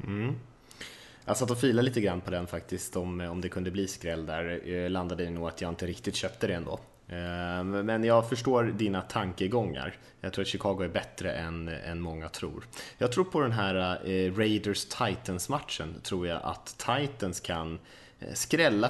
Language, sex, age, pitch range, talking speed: Swedish, male, 20-39, 90-115 Hz, 160 wpm